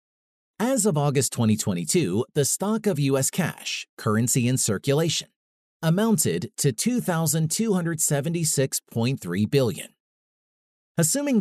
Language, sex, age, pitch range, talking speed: English, male, 40-59, 125-170 Hz, 90 wpm